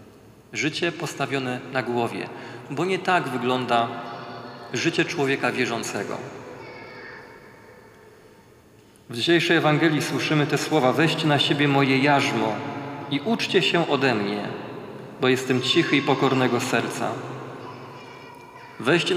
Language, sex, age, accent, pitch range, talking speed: Polish, male, 40-59, native, 130-160 Hz, 105 wpm